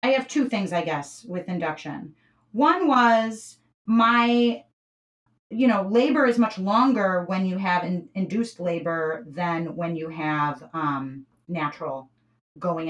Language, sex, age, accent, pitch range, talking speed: English, female, 30-49, American, 160-230 Hz, 140 wpm